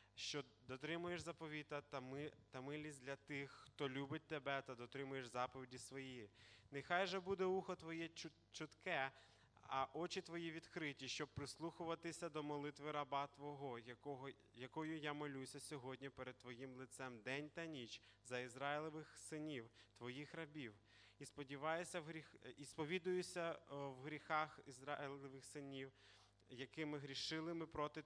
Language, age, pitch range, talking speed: Russian, 20-39, 125-150 Hz, 130 wpm